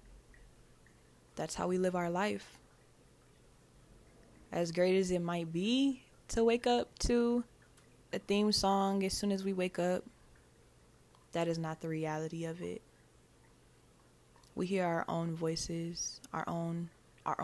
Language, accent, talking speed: English, American, 140 wpm